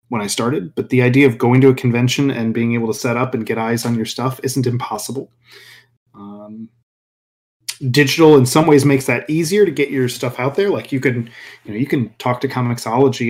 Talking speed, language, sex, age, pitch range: 220 wpm, English, male, 30-49, 115-135 Hz